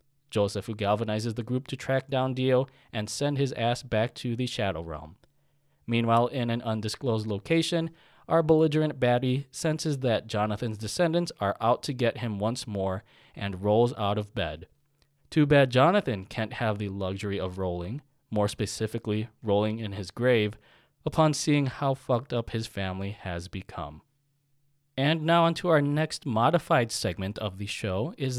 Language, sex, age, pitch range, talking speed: English, male, 20-39, 100-135 Hz, 165 wpm